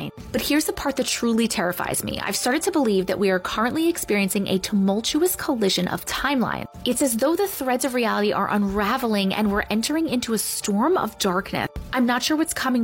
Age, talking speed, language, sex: 30-49, 205 wpm, English, female